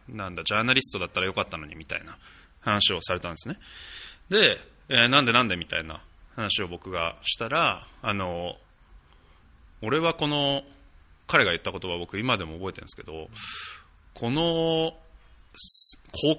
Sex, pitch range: male, 85-140 Hz